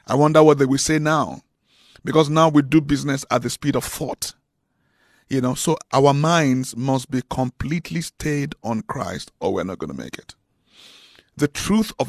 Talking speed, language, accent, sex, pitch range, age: 190 wpm, English, Nigerian, male, 130-165 Hz, 50-69